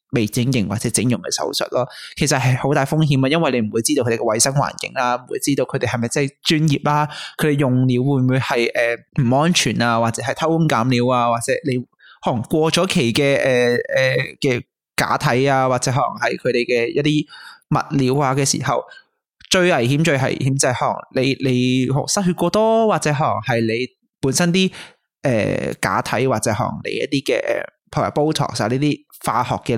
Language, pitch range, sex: Chinese, 120-150 Hz, male